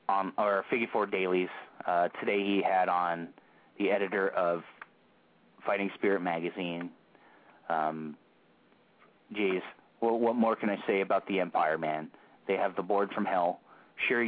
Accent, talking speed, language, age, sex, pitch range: American, 145 wpm, English, 30-49, male, 90-115 Hz